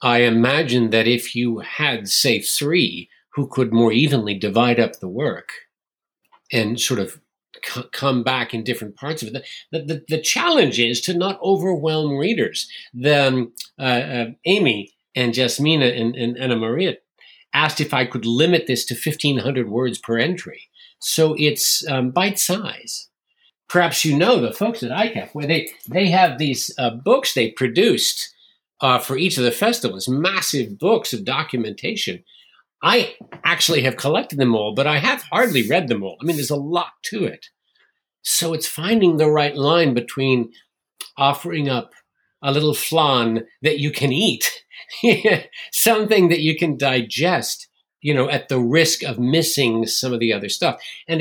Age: 50-69